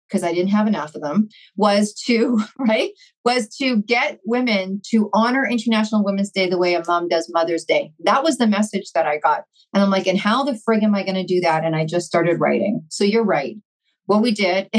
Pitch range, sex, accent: 190-225 Hz, female, American